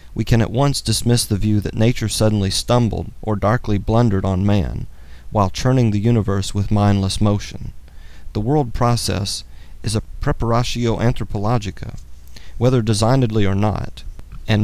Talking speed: 145 wpm